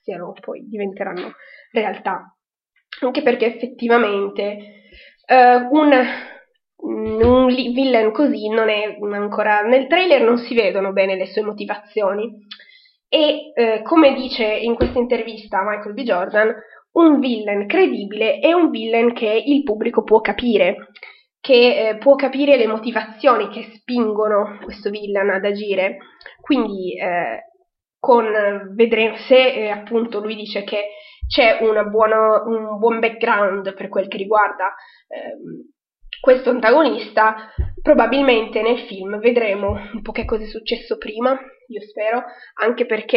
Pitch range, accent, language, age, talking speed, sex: 210-250 Hz, native, Italian, 20-39, 125 wpm, female